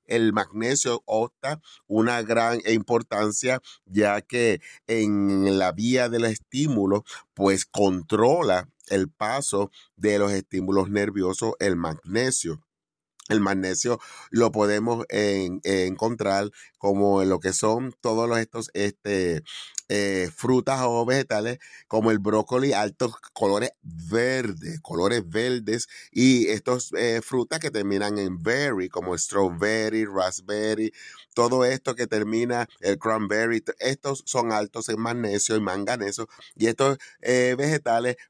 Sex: male